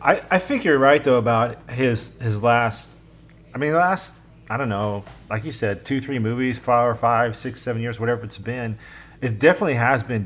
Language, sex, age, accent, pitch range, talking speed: English, male, 30-49, American, 110-150 Hz, 205 wpm